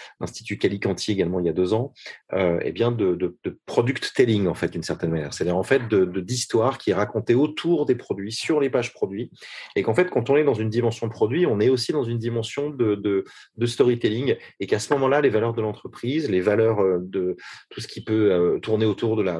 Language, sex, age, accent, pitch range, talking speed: French, male, 30-49, French, 100-125 Hz, 240 wpm